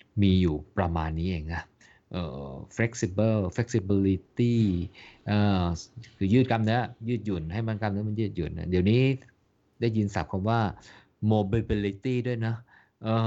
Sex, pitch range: male, 85-110 Hz